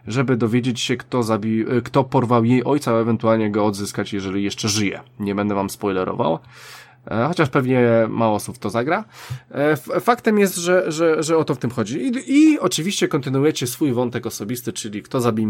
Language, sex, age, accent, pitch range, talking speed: Polish, male, 20-39, native, 120-165 Hz, 180 wpm